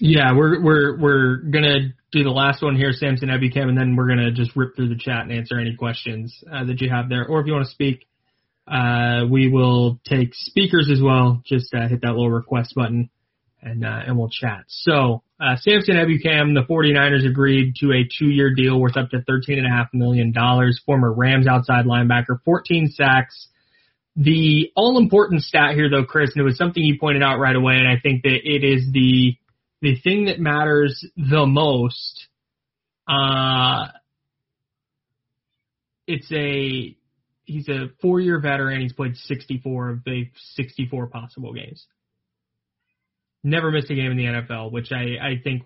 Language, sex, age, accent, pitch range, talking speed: English, male, 20-39, American, 120-140 Hz, 180 wpm